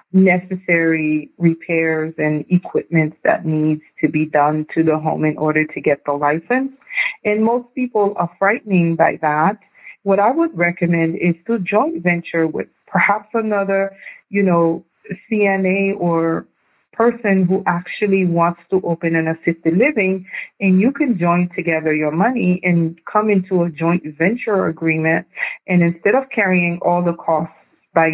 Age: 40-59